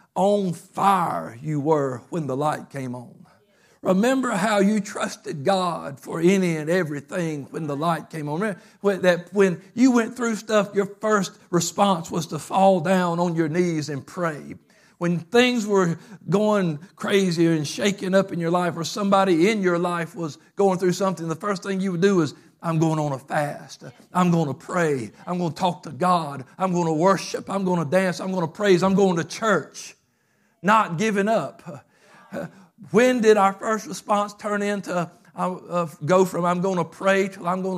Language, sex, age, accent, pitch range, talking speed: English, male, 60-79, American, 170-200 Hz, 195 wpm